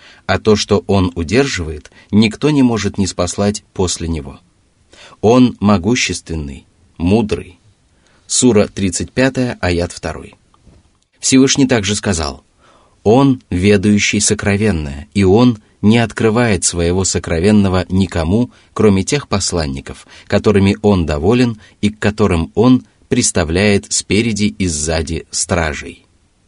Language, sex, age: Russian, male, 30-49